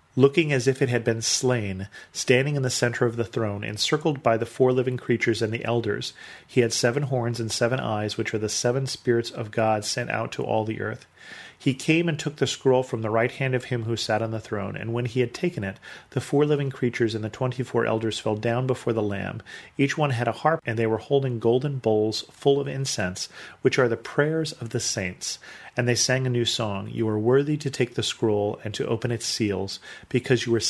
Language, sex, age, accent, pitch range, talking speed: English, male, 40-59, American, 110-130 Hz, 235 wpm